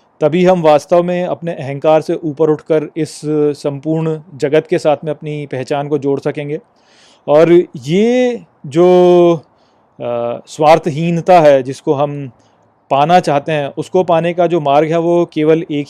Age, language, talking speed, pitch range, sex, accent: 30-49, Hindi, 145 wpm, 150-180 Hz, male, native